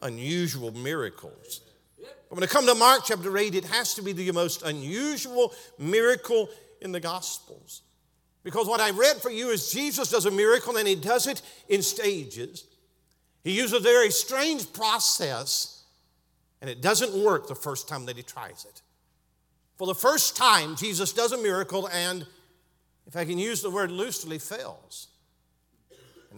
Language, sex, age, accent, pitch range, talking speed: English, male, 50-69, American, 155-240 Hz, 165 wpm